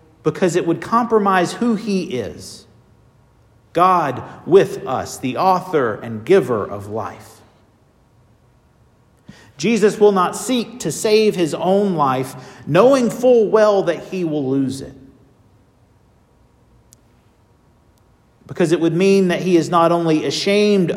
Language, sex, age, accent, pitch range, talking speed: English, male, 50-69, American, 120-175 Hz, 125 wpm